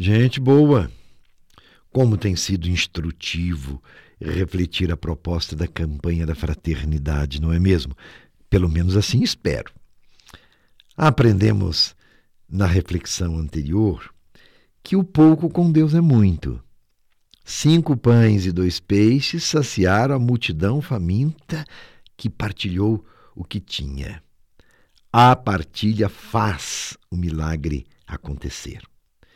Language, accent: Portuguese, Brazilian